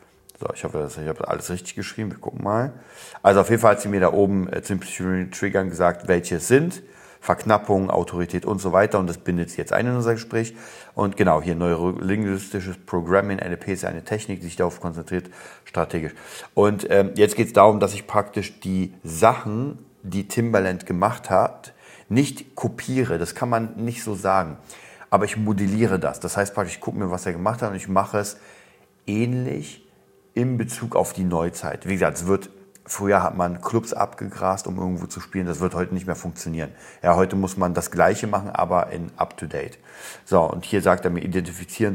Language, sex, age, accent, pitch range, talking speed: German, male, 40-59, German, 90-105 Hz, 200 wpm